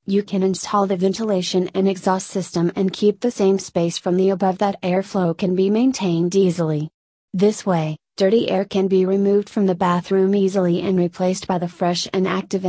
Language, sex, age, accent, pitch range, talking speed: English, female, 30-49, American, 175-200 Hz, 190 wpm